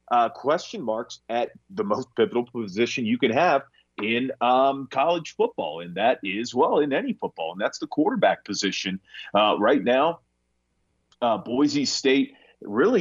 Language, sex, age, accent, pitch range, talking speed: English, male, 30-49, American, 100-135 Hz, 155 wpm